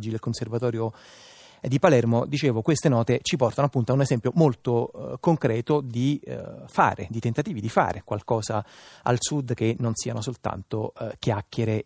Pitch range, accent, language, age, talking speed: 110-135 Hz, native, Italian, 30-49, 165 wpm